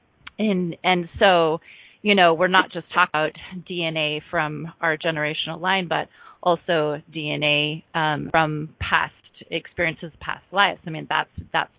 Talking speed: 145 wpm